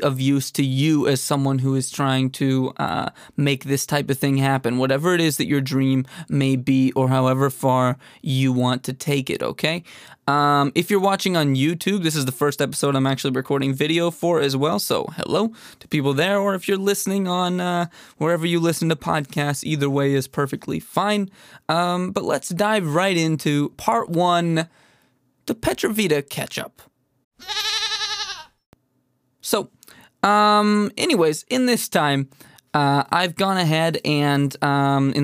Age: 20-39